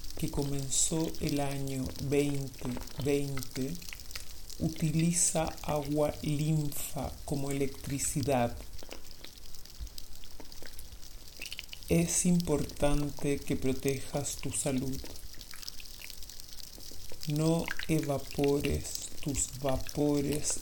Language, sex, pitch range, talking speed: Spanish, male, 90-150 Hz, 60 wpm